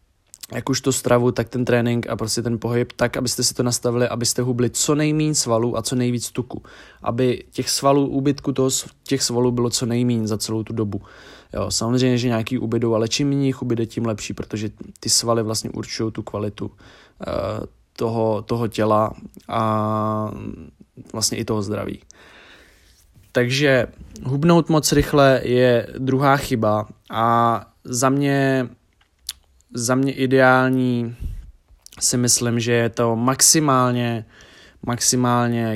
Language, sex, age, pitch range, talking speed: Czech, male, 20-39, 110-125 Hz, 145 wpm